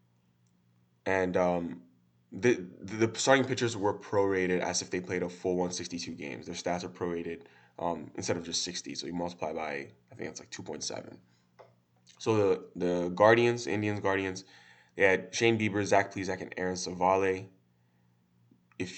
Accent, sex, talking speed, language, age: American, male, 160 wpm, English, 20-39